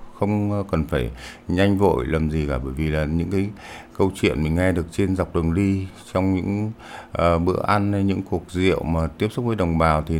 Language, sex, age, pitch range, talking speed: Vietnamese, male, 60-79, 80-100 Hz, 225 wpm